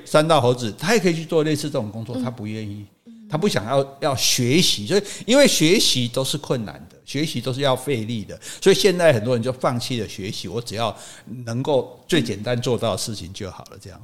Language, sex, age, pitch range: Chinese, male, 50-69, 110-155 Hz